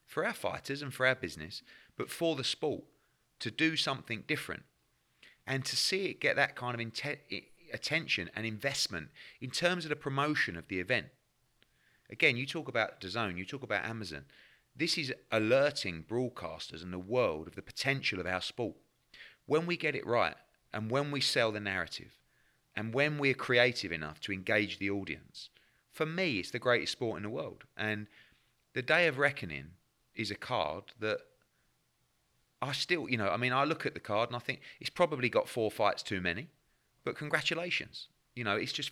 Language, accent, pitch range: English, British, 105-140 Hz